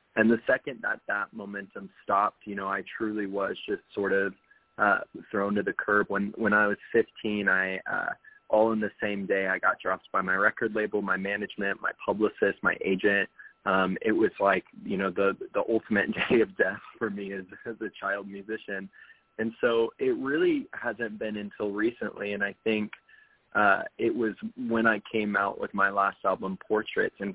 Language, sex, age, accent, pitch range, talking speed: English, male, 20-39, American, 100-110 Hz, 195 wpm